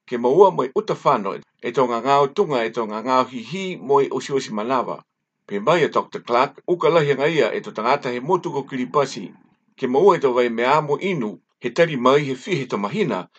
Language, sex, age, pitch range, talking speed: English, male, 60-79, 125-190 Hz, 185 wpm